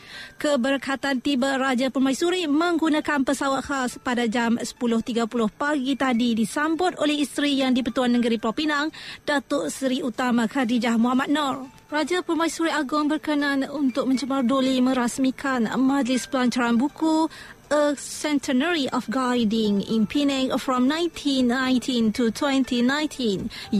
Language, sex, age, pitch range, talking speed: Malay, female, 30-49, 250-300 Hz, 120 wpm